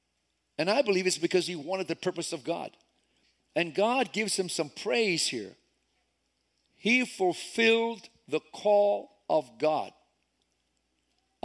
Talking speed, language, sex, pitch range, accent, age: 130 wpm, English, male, 150-225 Hz, American, 50-69